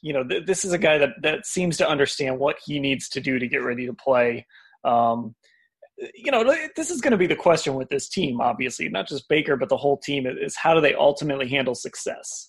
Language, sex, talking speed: English, male, 235 wpm